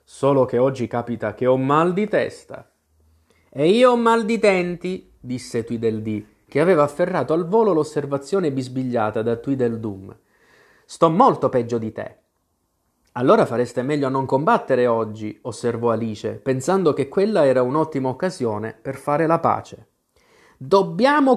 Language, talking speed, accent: Italian, 145 wpm, native